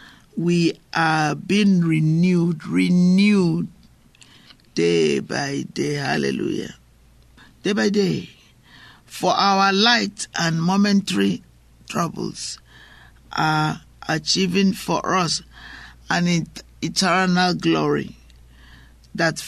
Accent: Nigerian